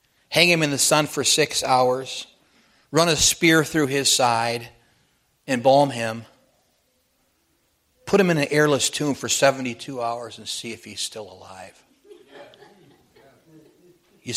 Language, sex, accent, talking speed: English, male, American, 135 wpm